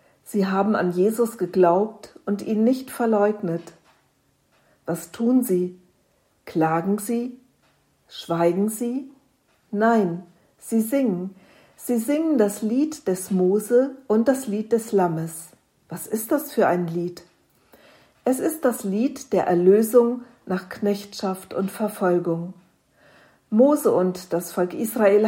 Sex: female